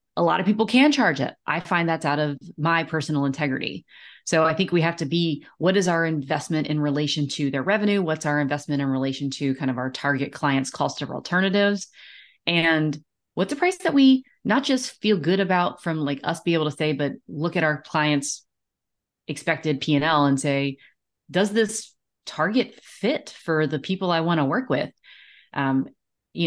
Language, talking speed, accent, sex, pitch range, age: English, 195 wpm, American, female, 145-175 Hz, 30-49